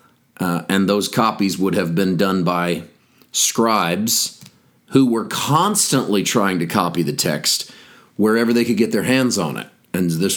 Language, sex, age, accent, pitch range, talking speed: English, male, 40-59, American, 95-120 Hz, 160 wpm